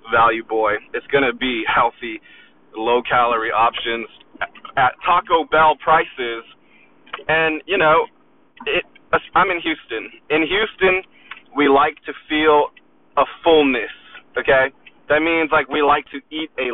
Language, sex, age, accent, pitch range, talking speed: English, male, 20-39, American, 135-165 Hz, 130 wpm